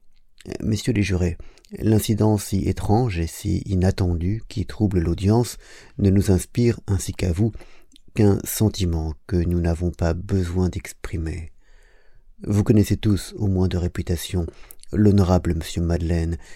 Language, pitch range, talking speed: French, 85-100 Hz, 130 wpm